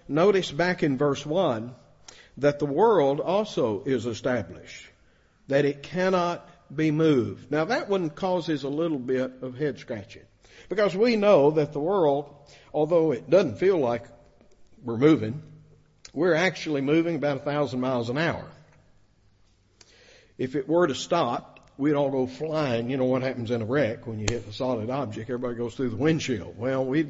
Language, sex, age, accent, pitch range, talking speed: English, male, 60-79, American, 125-160 Hz, 170 wpm